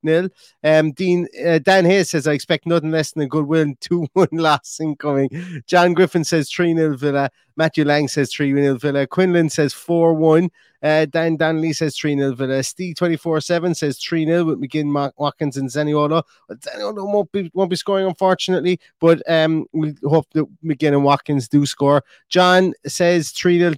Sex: male